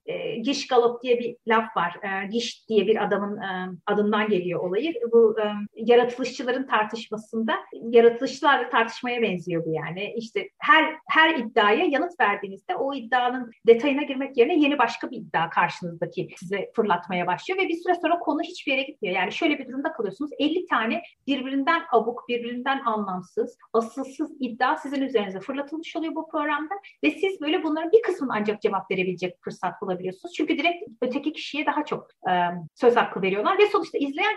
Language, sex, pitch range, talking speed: Turkish, female, 215-295 Hz, 170 wpm